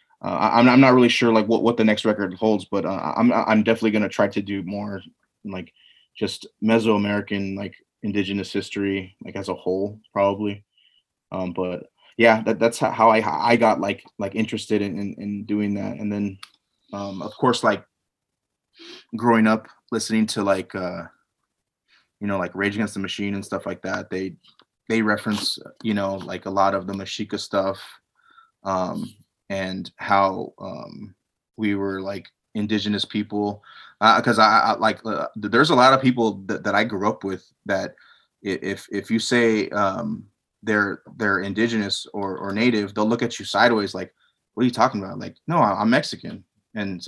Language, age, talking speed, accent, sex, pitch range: English, 20-39, 180 wpm, American, male, 100-115 Hz